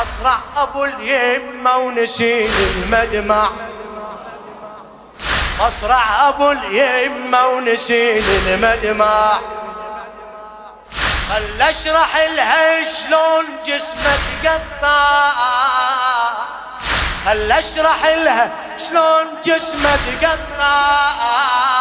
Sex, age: male, 20-39